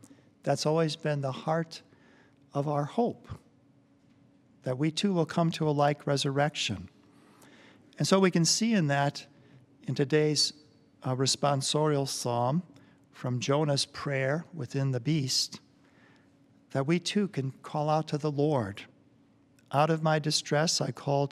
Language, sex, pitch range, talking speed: English, male, 130-150 Hz, 140 wpm